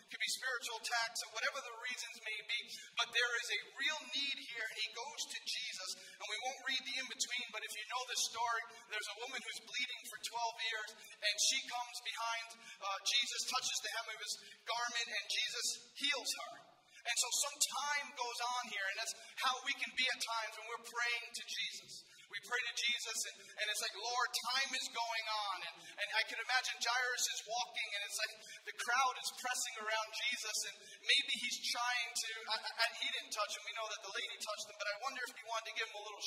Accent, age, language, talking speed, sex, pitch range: American, 40-59, English, 225 wpm, male, 220-250 Hz